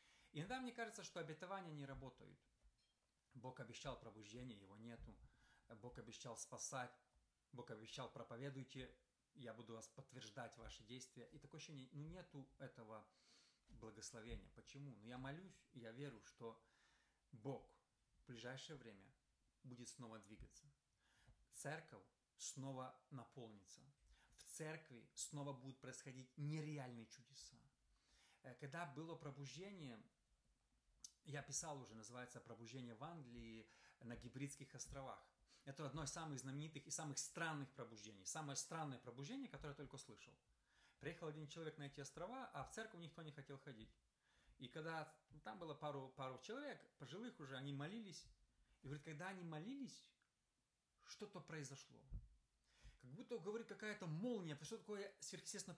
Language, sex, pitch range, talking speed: Russian, male, 120-160 Hz, 135 wpm